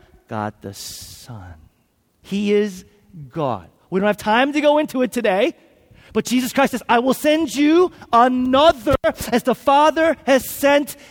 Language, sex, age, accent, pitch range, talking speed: English, male, 40-59, American, 185-265 Hz, 155 wpm